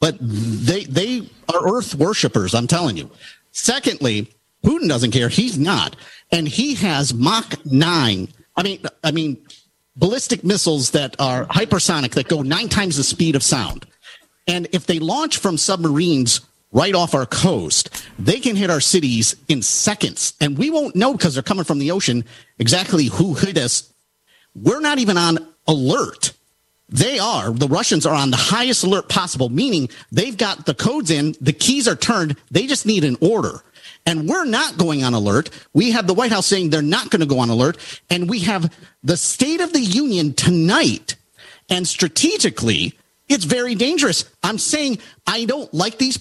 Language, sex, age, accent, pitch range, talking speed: English, male, 50-69, American, 150-230 Hz, 180 wpm